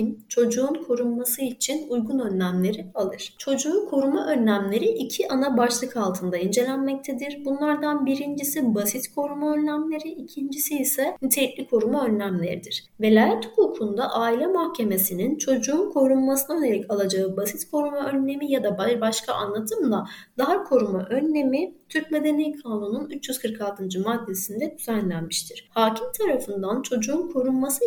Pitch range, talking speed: 220-290 Hz, 110 wpm